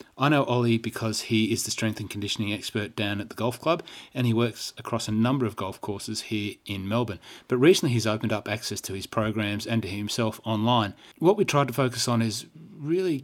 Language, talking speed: English, 220 wpm